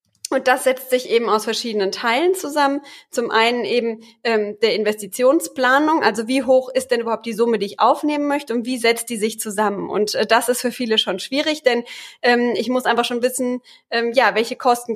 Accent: German